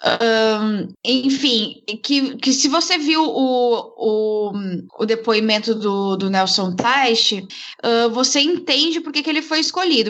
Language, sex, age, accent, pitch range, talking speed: Portuguese, female, 10-29, Brazilian, 220-275 Hz, 145 wpm